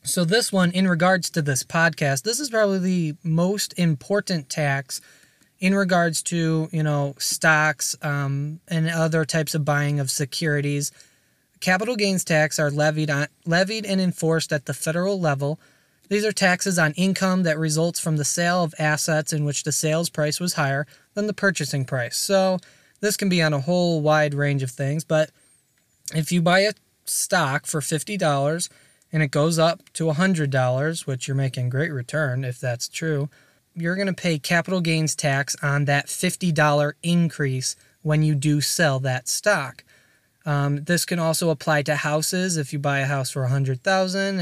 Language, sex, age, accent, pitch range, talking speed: English, male, 20-39, American, 140-175 Hz, 175 wpm